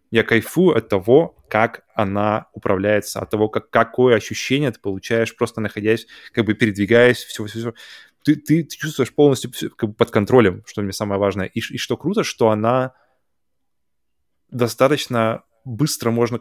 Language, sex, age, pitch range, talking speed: Russian, male, 20-39, 105-130 Hz, 160 wpm